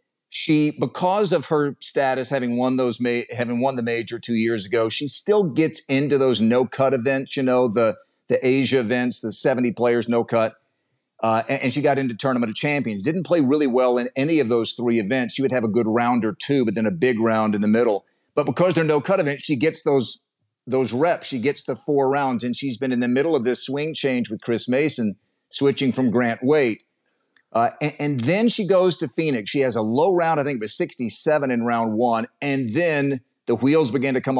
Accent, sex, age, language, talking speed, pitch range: American, male, 50-69, English, 225 wpm, 120-155 Hz